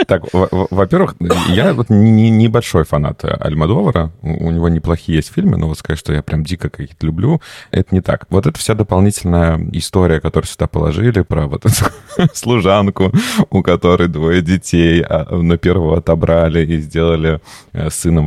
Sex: male